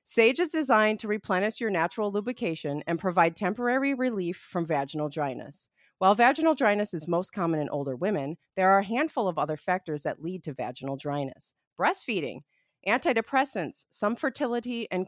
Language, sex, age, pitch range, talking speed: English, female, 30-49, 160-230 Hz, 165 wpm